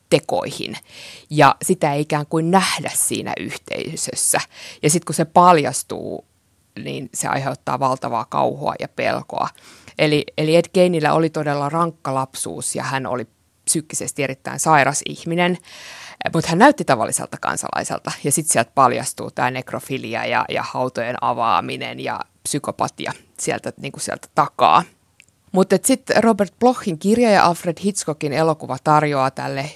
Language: Finnish